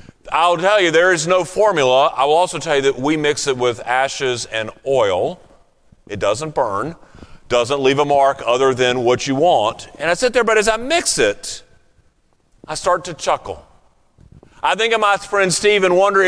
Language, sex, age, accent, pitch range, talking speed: English, male, 40-59, American, 130-180 Hz, 190 wpm